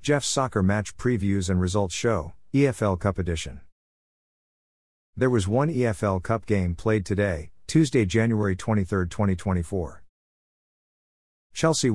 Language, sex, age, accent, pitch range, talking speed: English, male, 50-69, American, 90-115 Hz, 115 wpm